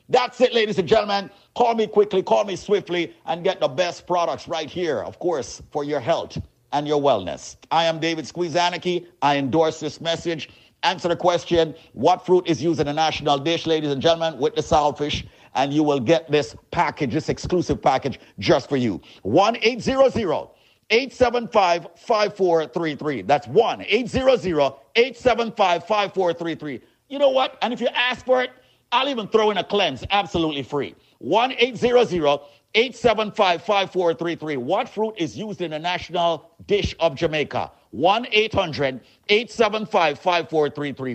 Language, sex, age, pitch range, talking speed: English, male, 50-69, 150-215 Hz, 150 wpm